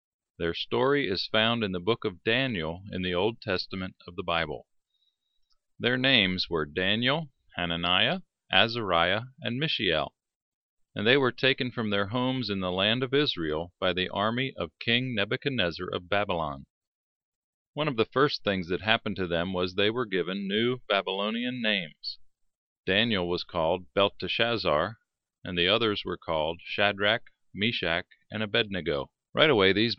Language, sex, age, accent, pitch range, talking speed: English, male, 40-59, American, 90-125 Hz, 150 wpm